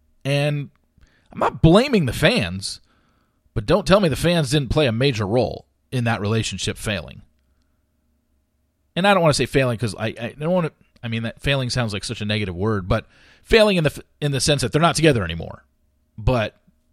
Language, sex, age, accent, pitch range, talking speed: English, male, 40-59, American, 95-150 Hz, 200 wpm